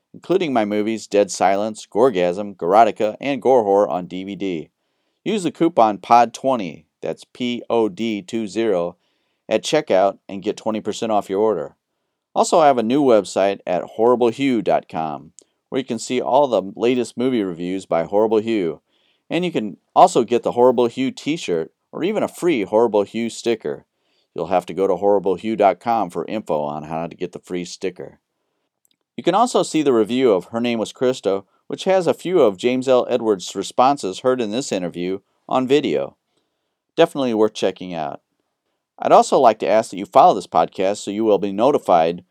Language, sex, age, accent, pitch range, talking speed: English, male, 40-59, American, 95-125 Hz, 180 wpm